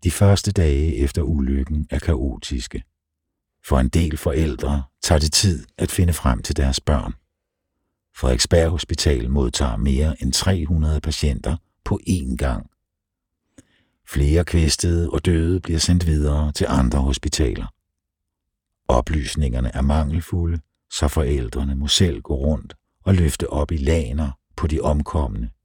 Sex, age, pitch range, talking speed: male, 60-79, 70-85 Hz, 135 wpm